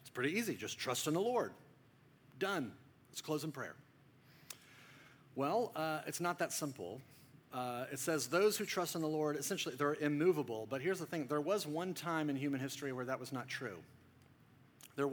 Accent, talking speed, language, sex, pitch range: American, 185 wpm, English, male, 135-165 Hz